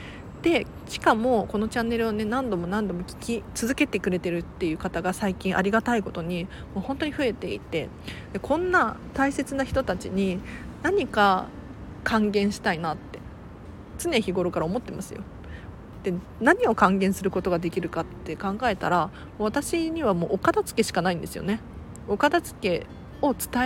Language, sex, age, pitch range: Japanese, female, 40-59, 185-270 Hz